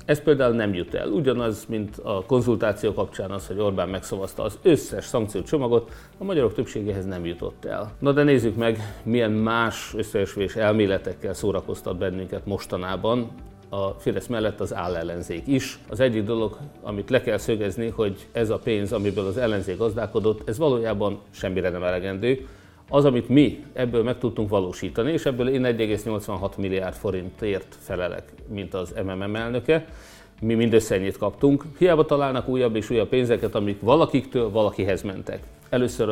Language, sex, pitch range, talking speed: Hungarian, male, 100-125 Hz, 155 wpm